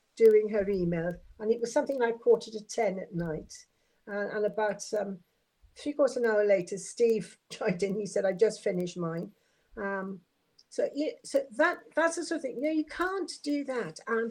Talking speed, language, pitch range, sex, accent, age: 195 wpm, English, 205-280 Hz, female, British, 60-79